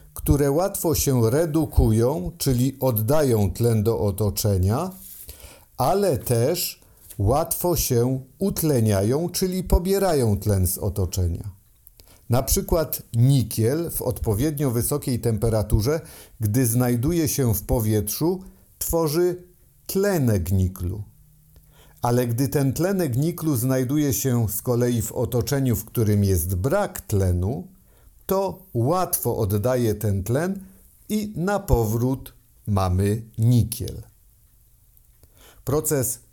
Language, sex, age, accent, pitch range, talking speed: Polish, male, 50-69, native, 110-155 Hz, 100 wpm